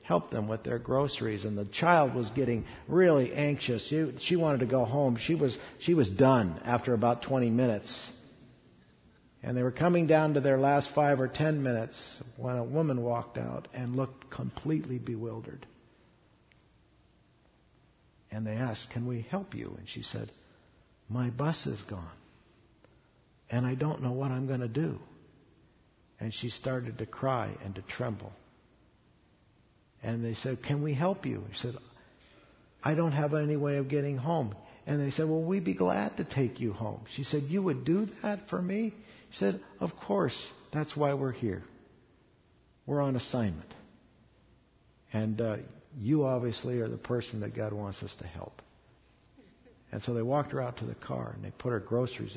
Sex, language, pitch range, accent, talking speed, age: male, English, 115-145 Hz, American, 175 wpm, 50-69